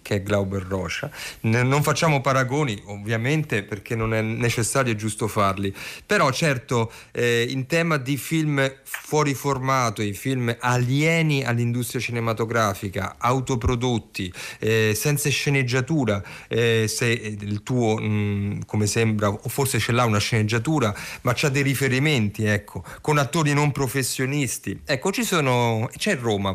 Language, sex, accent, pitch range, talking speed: Italian, male, native, 110-145 Hz, 140 wpm